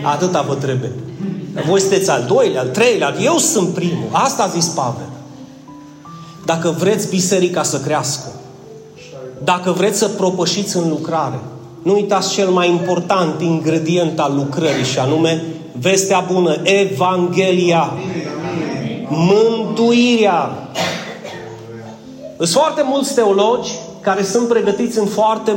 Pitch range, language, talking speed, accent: 155-200 Hz, Romanian, 115 wpm, native